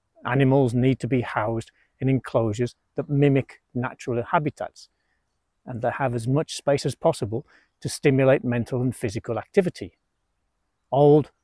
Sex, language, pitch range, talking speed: male, English, 110-140 Hz, 135 wpm